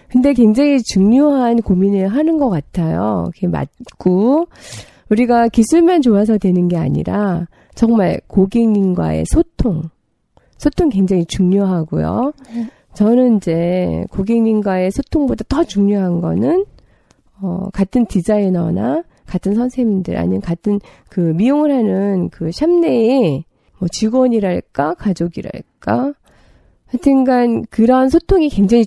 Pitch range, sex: 180-250 Hz, female